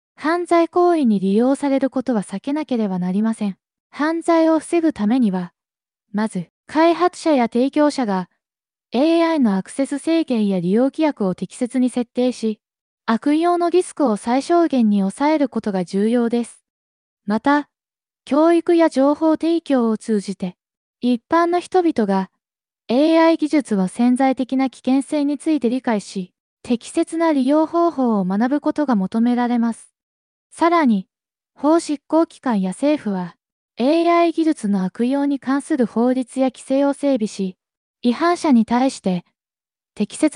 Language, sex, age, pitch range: Japanese, female, 20-39, 220-310 Hz